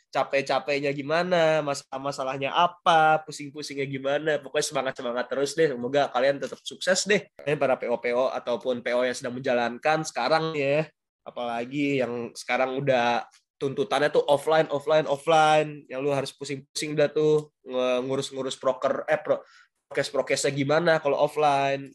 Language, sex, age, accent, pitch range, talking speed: Indonesian, male, 20-39, native, 125-155 Hz, 130 wpm